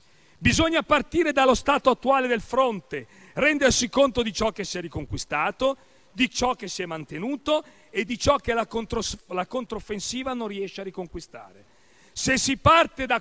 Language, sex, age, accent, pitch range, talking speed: Italian, male, 40-59, native, 195-245 Hz, 165 wpm